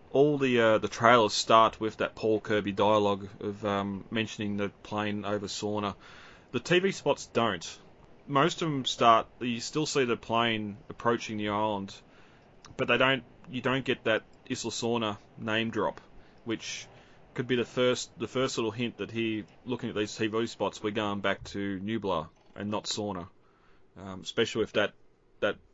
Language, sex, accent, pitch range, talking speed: English, male, Australian, 100-115 Hz, 175 wpm